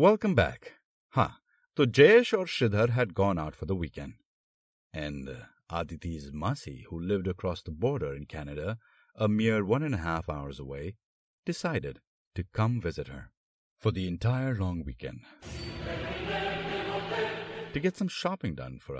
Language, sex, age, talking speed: Hindi, male, 50-69, 150 wpm